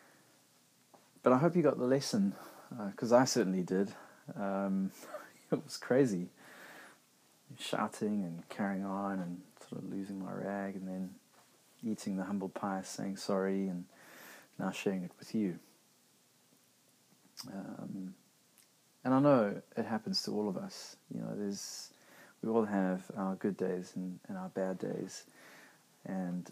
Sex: male